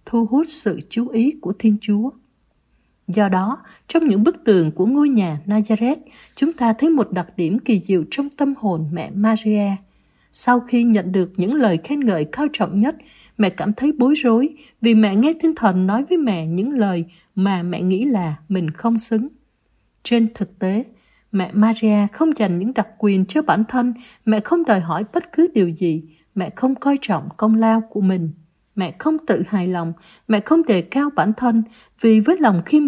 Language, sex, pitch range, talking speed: Vietnamese, female, 190-250 Hz, 195 wpm